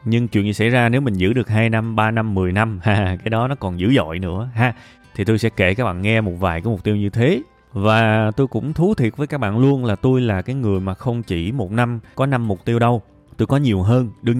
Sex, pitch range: male, 95-120 Hz